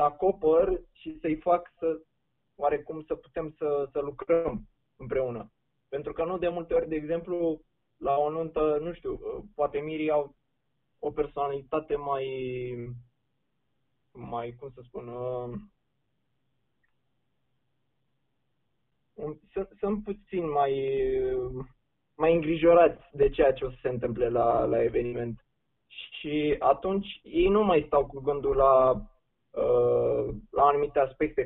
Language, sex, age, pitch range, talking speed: Romanian, male, 20-39, 135-195 Hz, 125 wpm